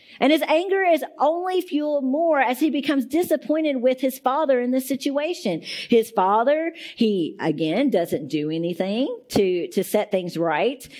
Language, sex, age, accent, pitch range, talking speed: English, female, 50-69, American, 195-285 Hz, 160 wpm